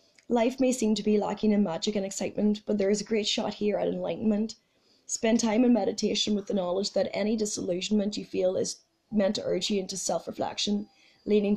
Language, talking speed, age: English, 200 wpm, 20-39